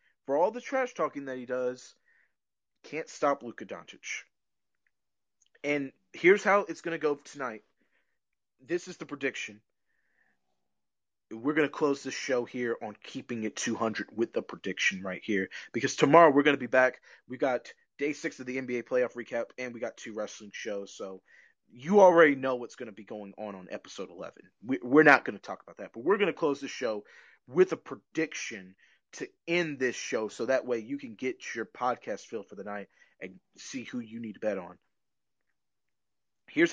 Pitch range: 110-155 Hz